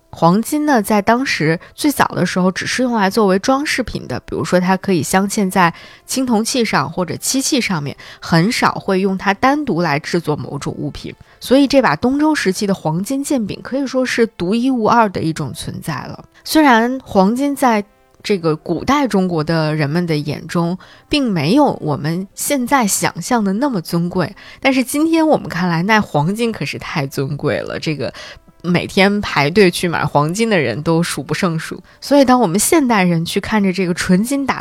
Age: 20-39